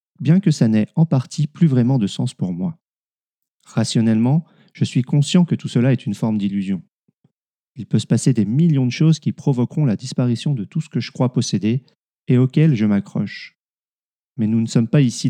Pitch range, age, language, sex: 115-155 Hz, 40-59, French, male